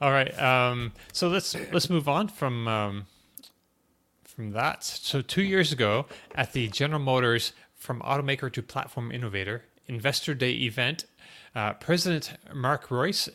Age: 30-49